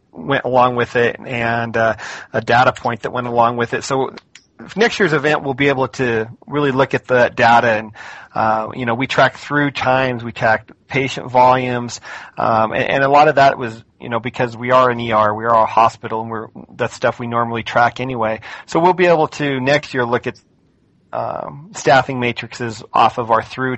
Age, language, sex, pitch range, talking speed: 40-59, English, male, 115-135 Hz, 205 wpm